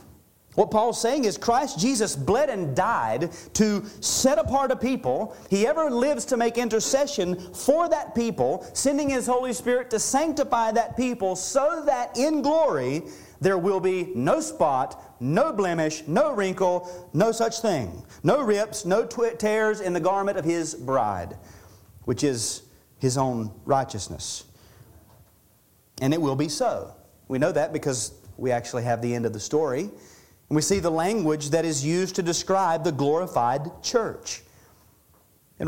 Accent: American